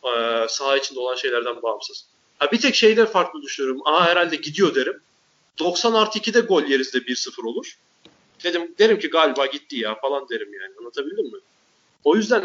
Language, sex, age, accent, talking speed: Turkish, male, 40-59, native, 170 wpm